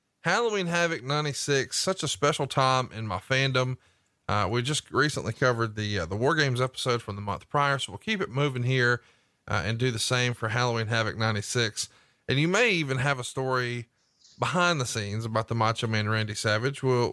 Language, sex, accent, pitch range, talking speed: English, male, American, 115-145 Hz, 200 wpm